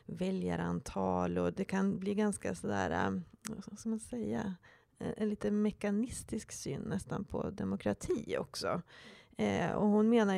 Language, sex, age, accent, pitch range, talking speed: Swedish, female, 30-49, native, 175-210 Hz, 120 wpm